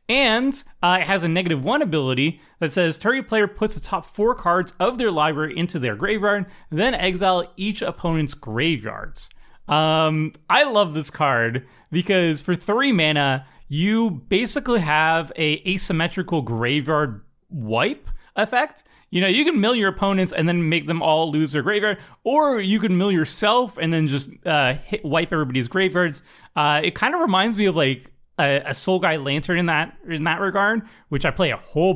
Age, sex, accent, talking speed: 30-49, male, American, 175 wpm